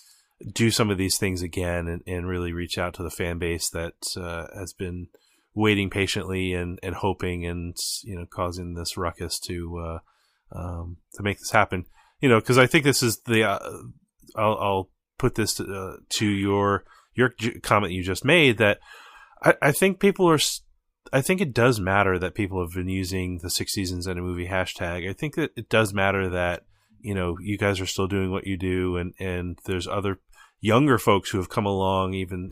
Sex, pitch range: male, 90-105 Hz